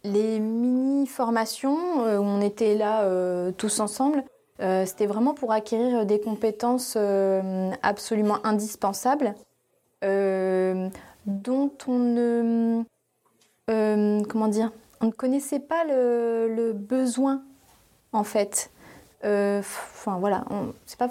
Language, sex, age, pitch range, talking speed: French, female, 20-39, 205-245 Hz, 115 wpm